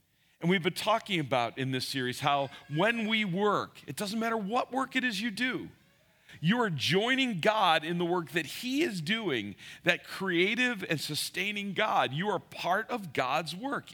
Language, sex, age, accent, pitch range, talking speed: English, male, 40-59, American, 150-200 Hz, 185 wpm